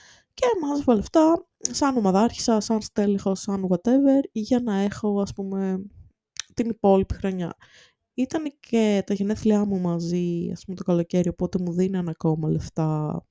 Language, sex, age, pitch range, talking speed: Greek, female, 20-39, 180-245 Hz, 145 wpm